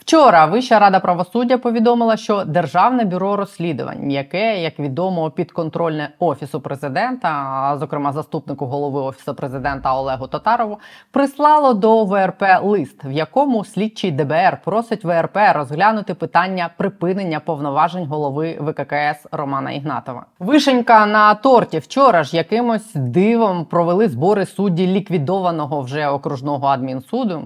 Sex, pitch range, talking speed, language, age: female, 155-215 Hz, 120 wpm, Ukrainian, 20-39